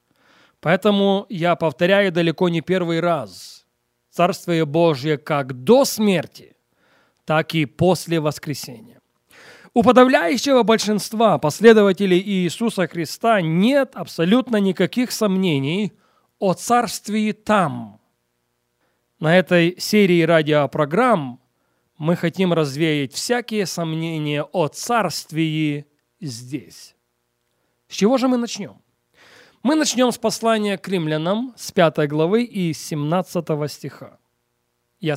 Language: Russian